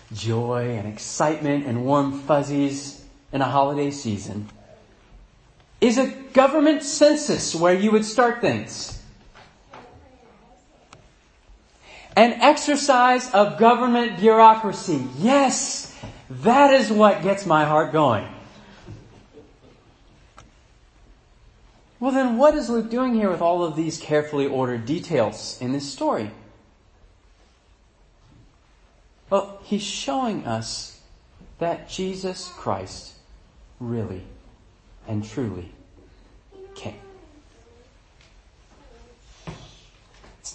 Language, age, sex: English, 40-59, male